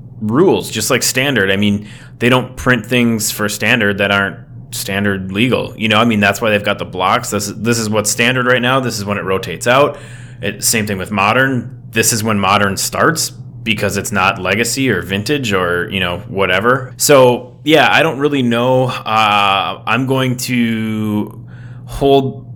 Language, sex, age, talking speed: English, male, 20-39, 185 wpm